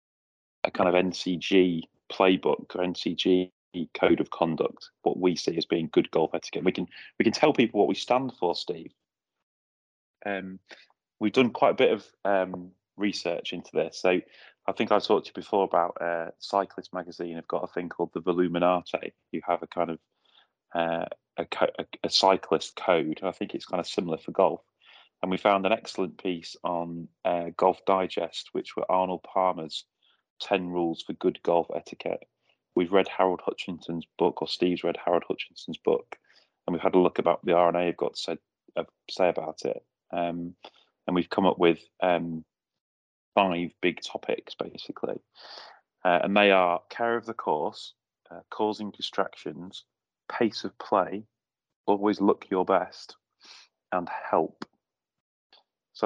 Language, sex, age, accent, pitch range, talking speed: English, male, 30-49, British, 85-100 Hz, 165 wpm